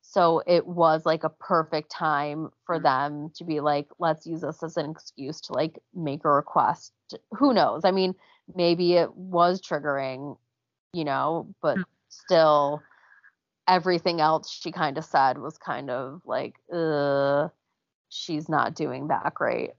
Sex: female